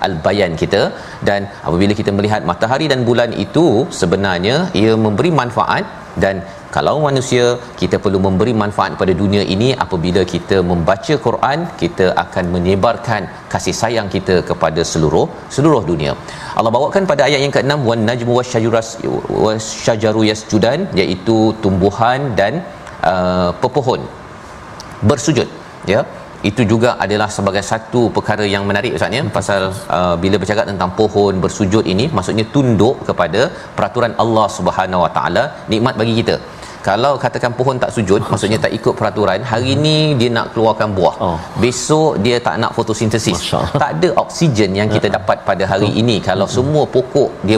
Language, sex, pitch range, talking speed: Malayalam, male, 100-120 Hz, 150 wpm